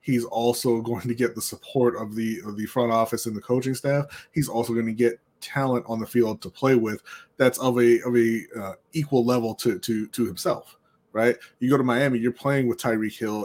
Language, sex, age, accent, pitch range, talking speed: English, male, 20-39, American, 115-135 Hz, 225 wpm